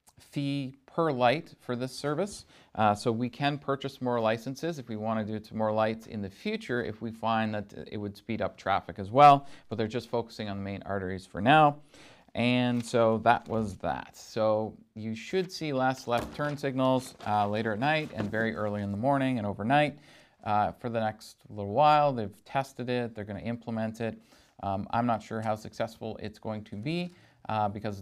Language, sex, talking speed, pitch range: English, male, 210 wpm, 105-135 Hz